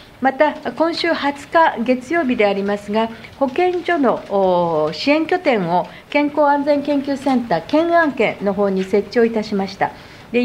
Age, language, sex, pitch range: 50-69, Japanese, female, 215-305 Hz